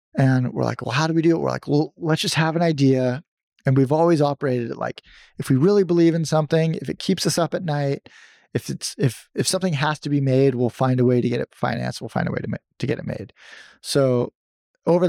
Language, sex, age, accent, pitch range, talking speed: English, male, 20-39, American, 125-150 Hz, 255 wpm